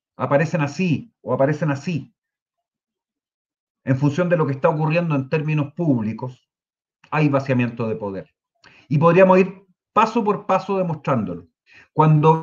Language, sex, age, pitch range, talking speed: Spanish, male, 40-59, 130-170 Hz, 130 wpm